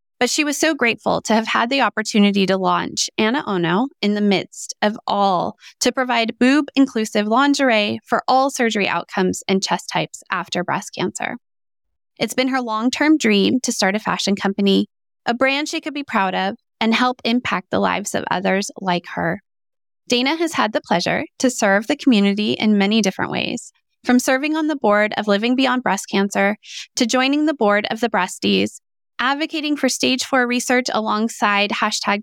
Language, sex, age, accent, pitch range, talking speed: English, female, 20-39, American, 200-260 Hz, 180 wpm